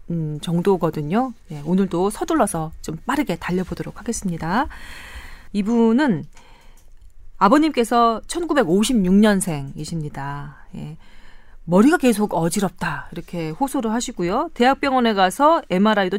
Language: Korean